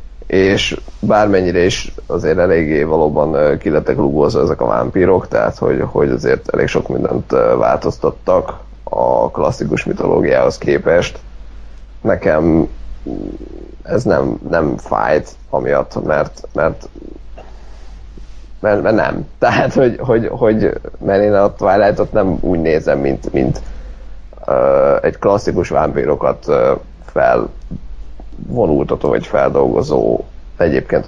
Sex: male